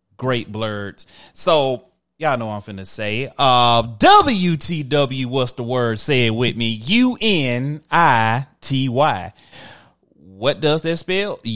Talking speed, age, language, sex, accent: 120 wpm, 30-49, English, male, American